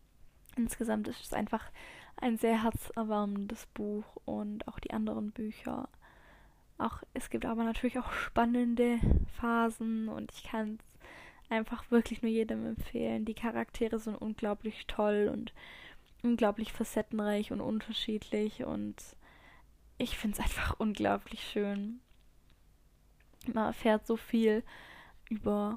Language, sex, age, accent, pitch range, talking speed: German, female, 10-29, German, 210-235 Hz, 120 wpm